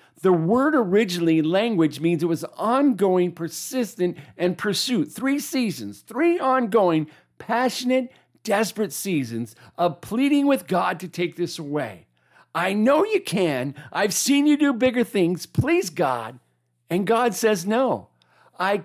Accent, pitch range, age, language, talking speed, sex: American, 160-240 Hz, 50-69, English, 135 wpm, male